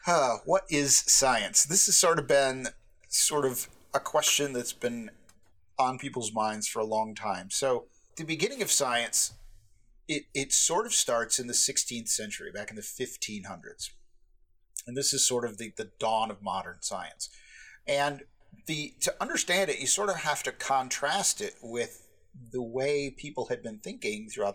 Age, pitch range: 40-59, 110-140 Hz